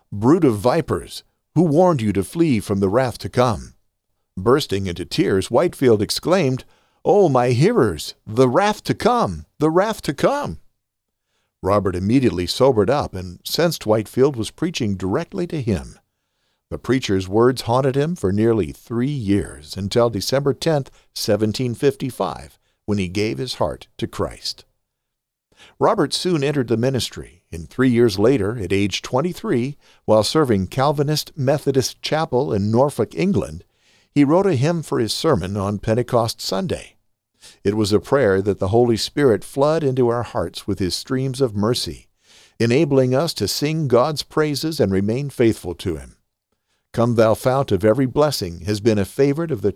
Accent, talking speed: American, 160 wpm